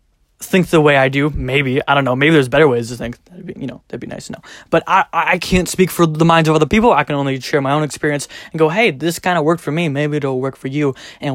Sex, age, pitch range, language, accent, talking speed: male, 20-39, 125-155 Hz, English, American, 290 wpm